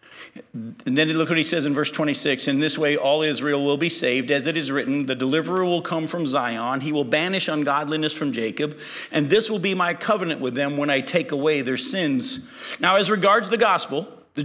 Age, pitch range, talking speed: 50-69, 145-190 Hz, 220 wpm